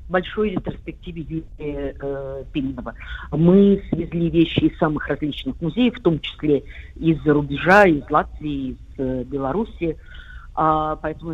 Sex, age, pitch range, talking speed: female, 50-69, 145-165 Hz, 110 wpm